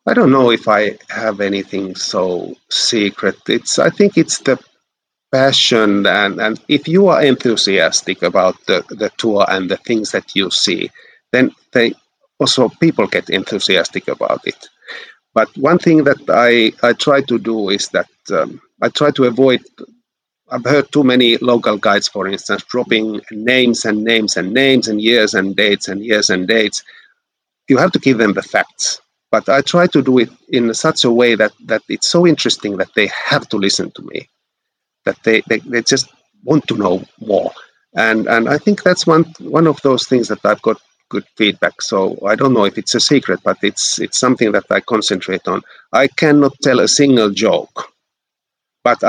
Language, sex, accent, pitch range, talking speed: English, male, Finnish, 110-150 Hz, 185 wpm